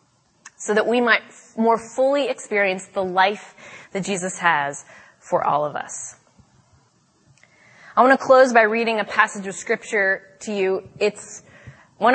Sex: female